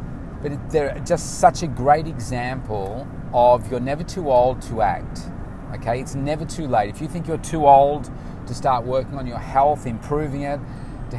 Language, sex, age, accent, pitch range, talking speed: English, male, 30-49, Australian, 115-140 Hz, 180 wpm